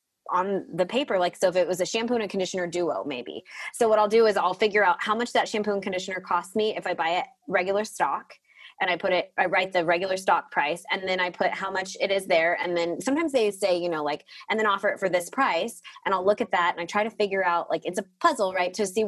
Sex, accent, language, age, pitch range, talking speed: female, American, English, 20-39, 180-225 Hz, 275 wpm